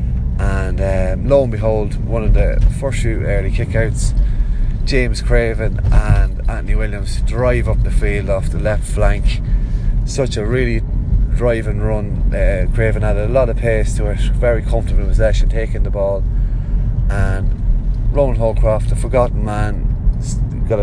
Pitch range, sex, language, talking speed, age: 100-115 Hz, male, English, 155 wpm, 30-49